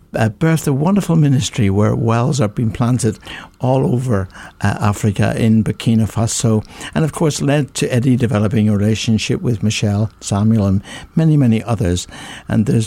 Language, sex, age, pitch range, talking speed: English, male, 60-79, 100-130 Hz, 155 wpm